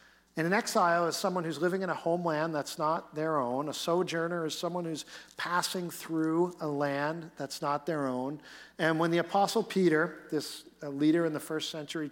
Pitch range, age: 160-230 Hz, 50-69